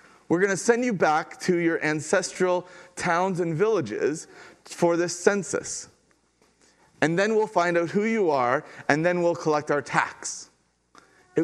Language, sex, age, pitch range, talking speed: English, male, 30-49, 140-185 Hz, 155 wpm